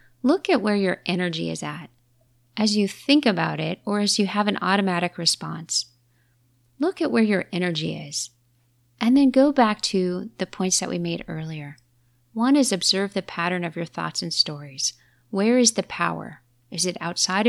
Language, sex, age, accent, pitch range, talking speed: English, female, 30-49, American, 125-205 Hz, 180 wpm